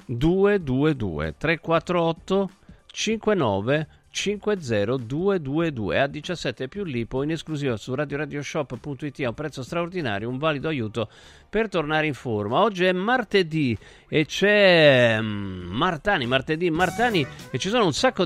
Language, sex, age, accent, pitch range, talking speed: Italian, male, 50-69, native, 120-170 Hz, 120 wpm